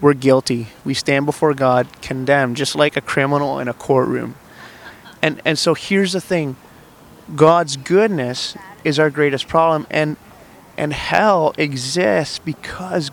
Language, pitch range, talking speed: English, 130-160 Hz, 140 wpm